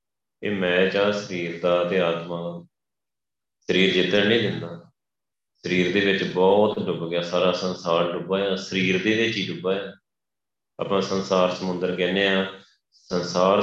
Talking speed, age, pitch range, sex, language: 125 wpm, 30-49, 90-100 Hz, male, Punjabi